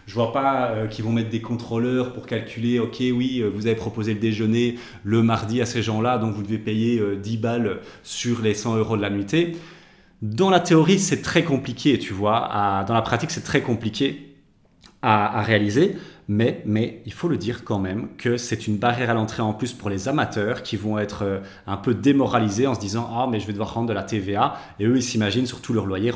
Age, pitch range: 30-49, 105-140 Hz